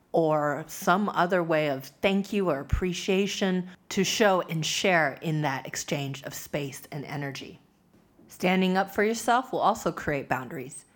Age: 30-49